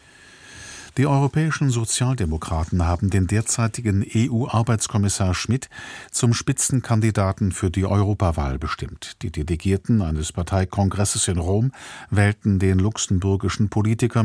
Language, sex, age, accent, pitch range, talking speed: German, male, 50-69, German, 90-110 Hz, 100 wpm